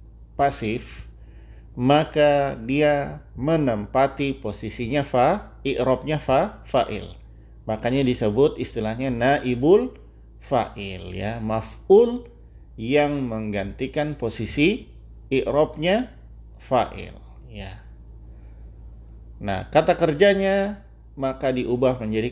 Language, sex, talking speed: Indonesian, male, 75 wpm